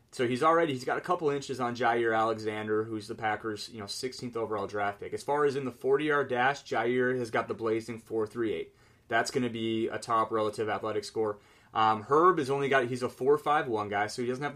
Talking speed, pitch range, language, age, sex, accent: 245 wpm, 115-140 Hz, English, 30-49, male, American